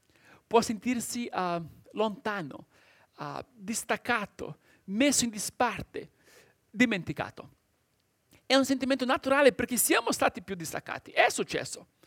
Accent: native